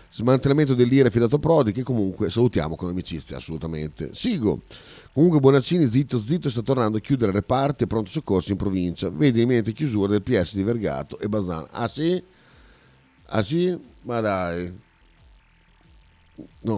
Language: Italian